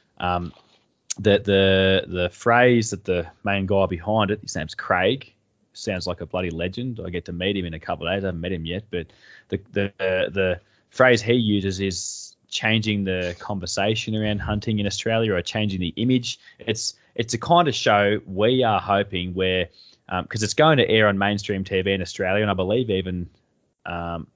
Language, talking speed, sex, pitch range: English, 195 wpm, male, 90-110 Hz